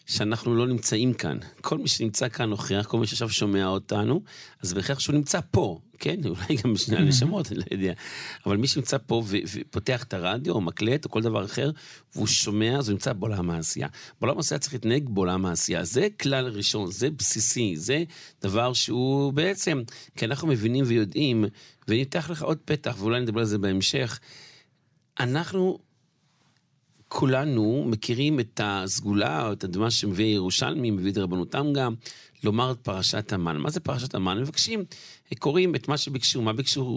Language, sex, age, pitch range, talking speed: Hebrew, male, 50-69, 105-140 Hz, 165 wpm